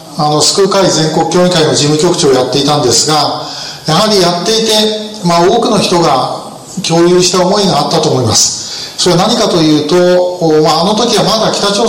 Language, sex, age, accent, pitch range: Japanese, male, 40-59, native, 155-195 Hz